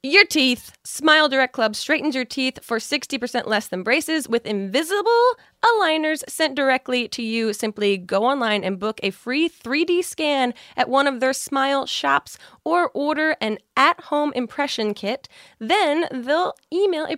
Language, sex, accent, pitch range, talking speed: English, female, American, 220-295 Hz, 160 wpm